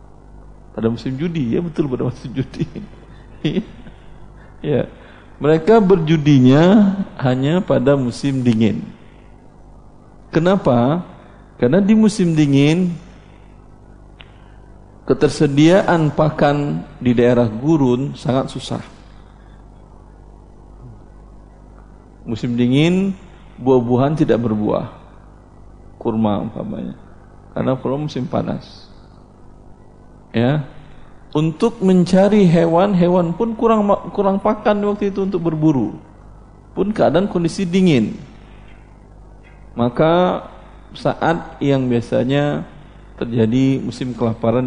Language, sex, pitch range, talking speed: Indonesian, male, 110-165 Hz, 80 wpm